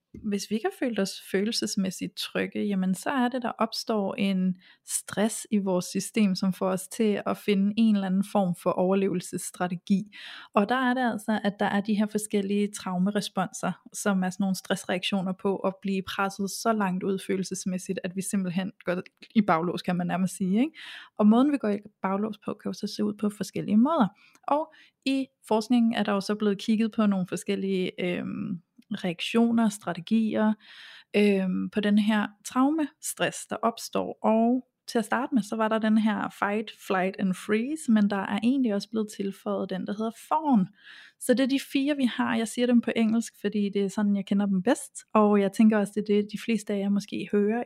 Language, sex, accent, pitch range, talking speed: Danish, female, native, 195-230 Hz, 205 wpm